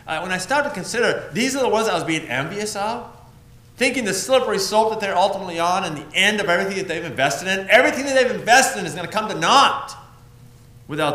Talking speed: 235 wpm